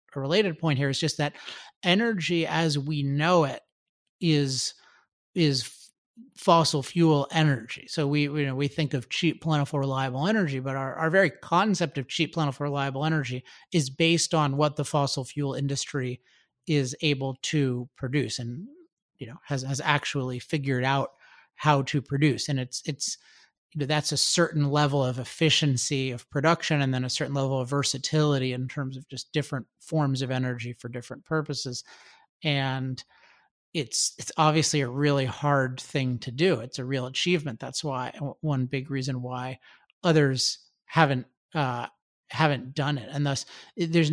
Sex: male